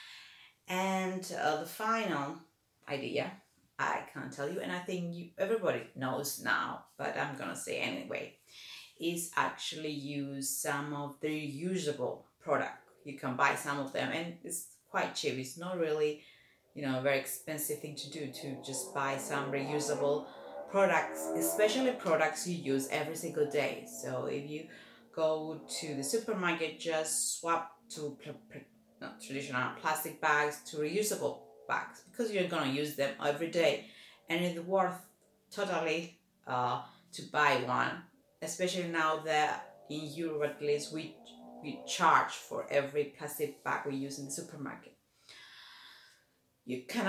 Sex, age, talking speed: female, 30-49, 150 wpm